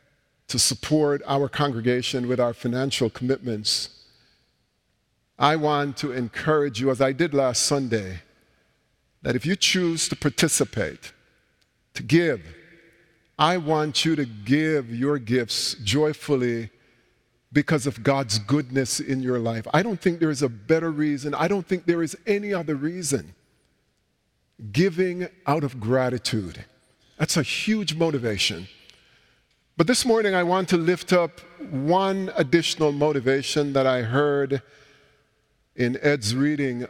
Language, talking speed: English, 135 wpm